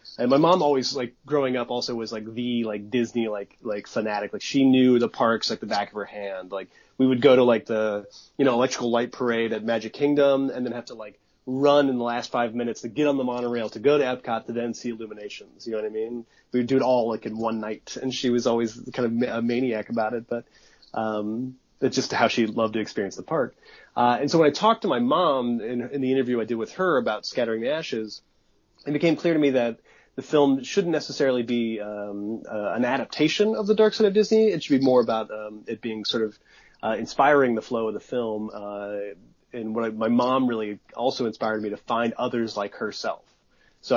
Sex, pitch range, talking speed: male, 110-130 Hz, 240 wpm